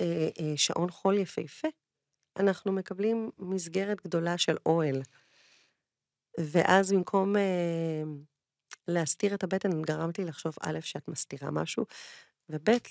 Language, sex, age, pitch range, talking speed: Hebrew, female, 30-49, 155-205 Hz, 110 wpm